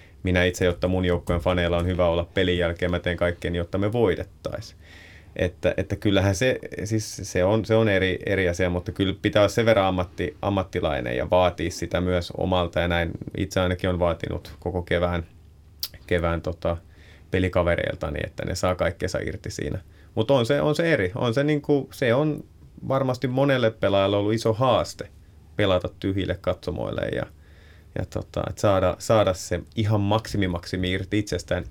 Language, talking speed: Finnish, 170 wpm